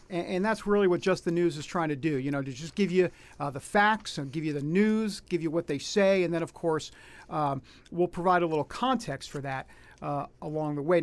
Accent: American